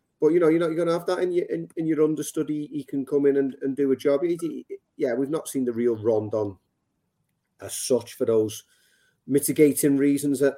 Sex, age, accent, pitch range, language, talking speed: male, 30-49, British, 120-145 Hz, English, 225 wpm